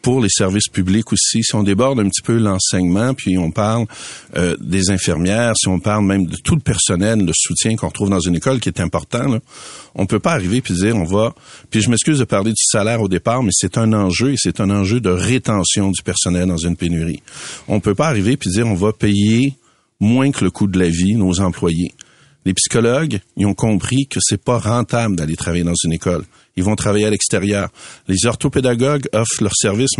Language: French